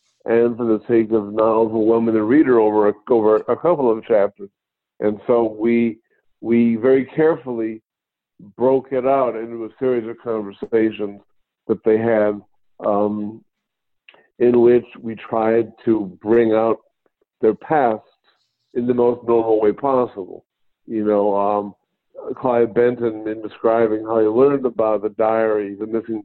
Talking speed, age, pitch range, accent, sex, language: 155 wpm, 50-69, 105-120 Hz, American, male, English